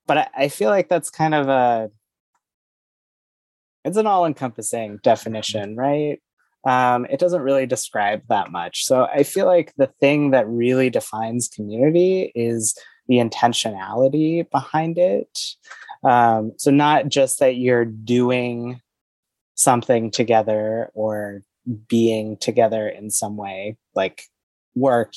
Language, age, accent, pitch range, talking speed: English, 20-39, American, 110-135 Hz, 125 wpm